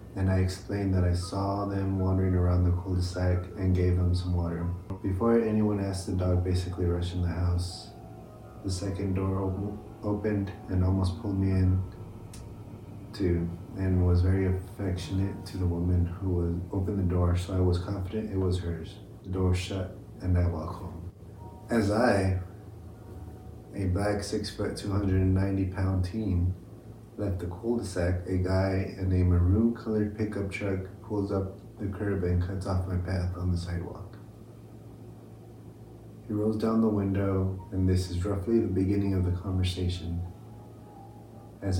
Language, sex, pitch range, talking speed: English, male, 90-110 Hz, 155 wpm